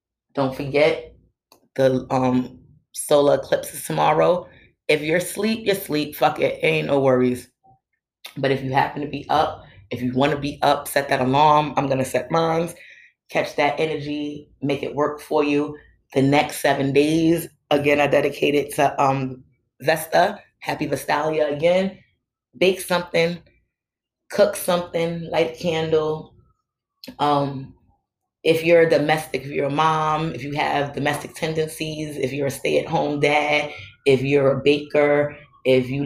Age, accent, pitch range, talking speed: 20-39, American, 140-165 Hz, 155 wpm